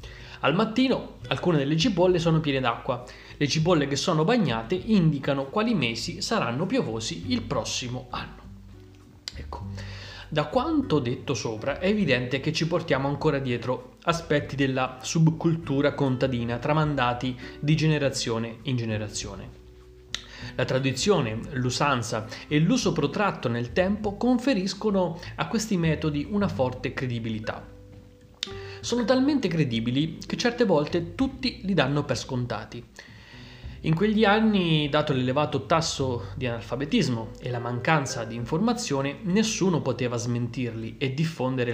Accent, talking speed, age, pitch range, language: native, 125 wpm, 30-49, 120-170 Hz, Italian